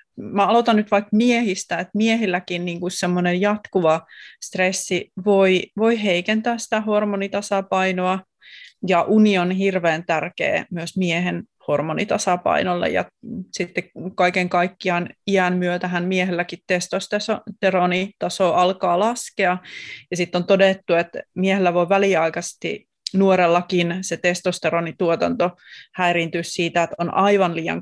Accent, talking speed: native, 110 wpm